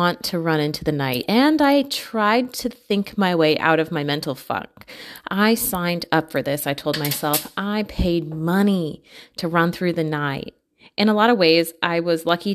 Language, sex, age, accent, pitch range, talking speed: English, female, 30-49, American, 160-210 Hz, 200 wpm